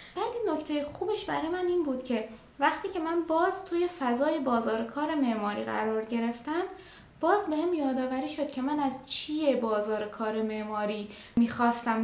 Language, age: Persian, 10-29